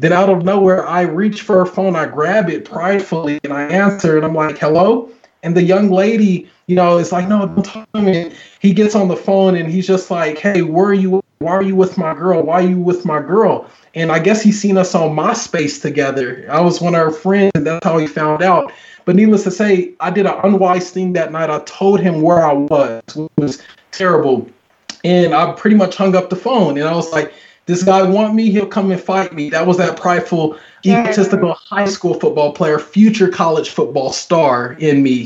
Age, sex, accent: 20-39, male, American